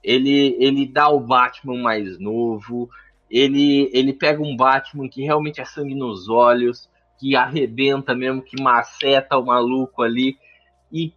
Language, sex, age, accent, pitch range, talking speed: Portuguese, male, 20-39, Brazilian, 120-145 Hz, 145 wpm